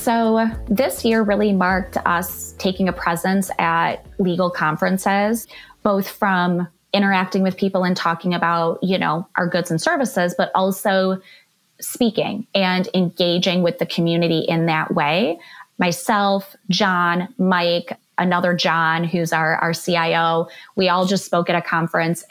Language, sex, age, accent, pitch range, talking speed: English, female, 20-39, American, 170-195 Hz, 145 wpm